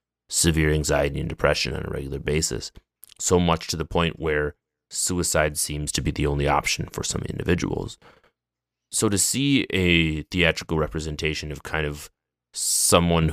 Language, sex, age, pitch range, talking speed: English, male, 30-49, 75-80 Hz, 155 wpm